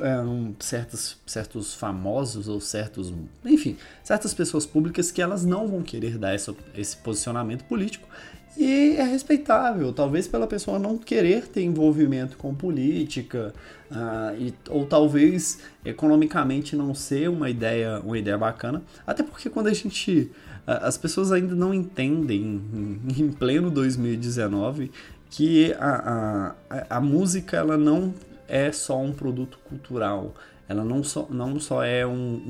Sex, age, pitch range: male, 20-39, 115-155 Hz